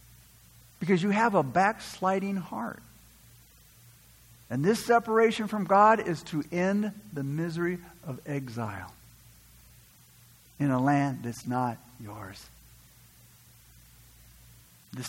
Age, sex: 50-69, male